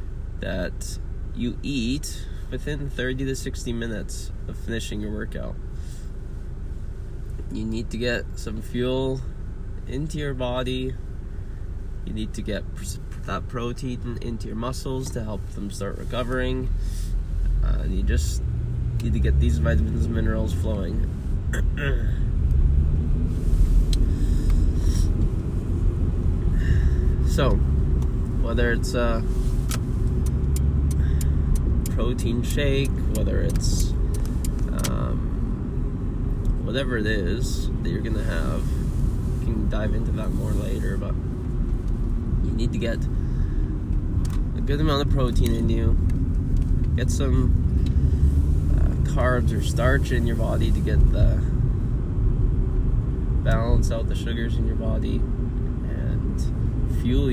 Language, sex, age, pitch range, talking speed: English, male, 20-39, 75-115 Hz, 110 wpm